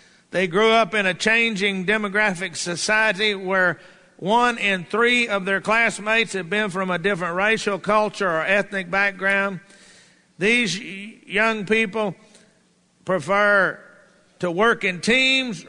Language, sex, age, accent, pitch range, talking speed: English, male, 50-69, American, 190-230 Hz, 125 wpm